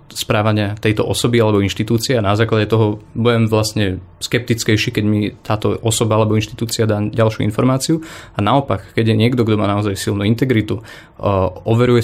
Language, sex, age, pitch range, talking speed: Slovak, male, 20-39, 105-120 Hz, 165 wpm